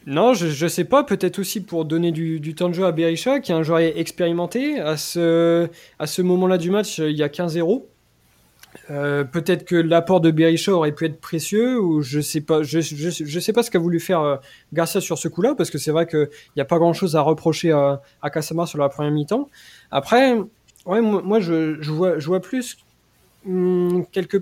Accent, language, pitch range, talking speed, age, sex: French, French, 155-190 Hz, 220 wpm, 20-39, male